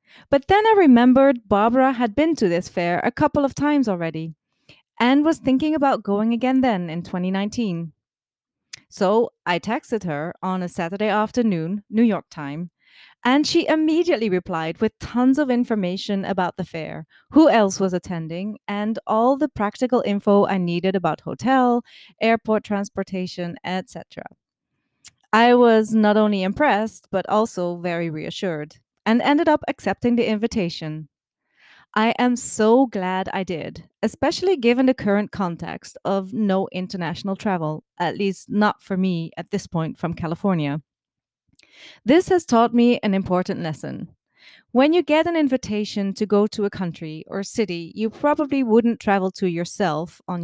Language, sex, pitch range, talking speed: English, female, 180-240 Hz, 150 wpm